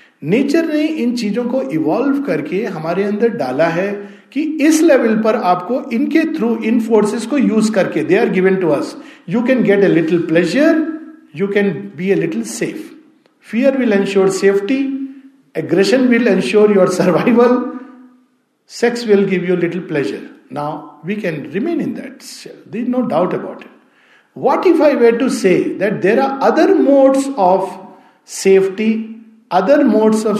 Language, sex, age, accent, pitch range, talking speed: Hindi, male, 50-69, native, 170-255 Hz, 160 wpm